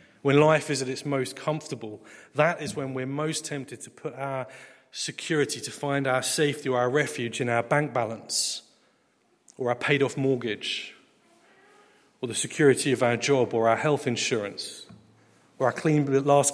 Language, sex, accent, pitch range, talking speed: English, male, British, 115-140 Hz, 165 wpm